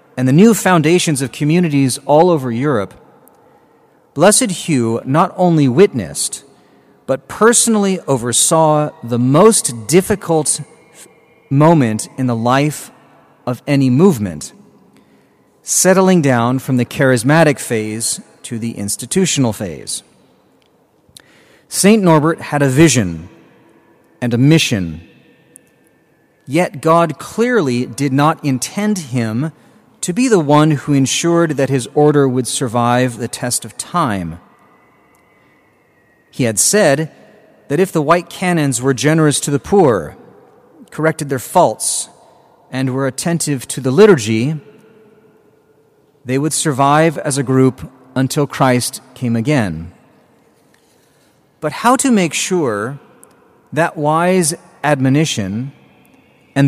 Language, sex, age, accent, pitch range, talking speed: English, male, 40-59, American, 125-170 Hz, 115 wpm